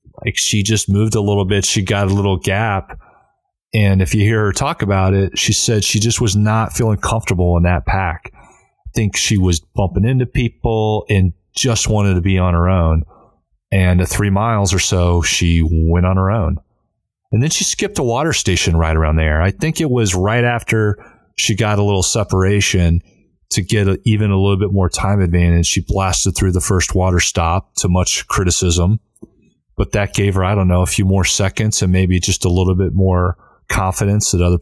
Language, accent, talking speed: English, American, 205 wpm